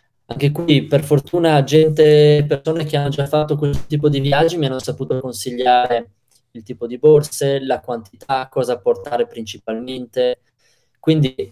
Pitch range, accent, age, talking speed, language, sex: 120-145 Hz, native, 20-39, 145 wpm, Italian, male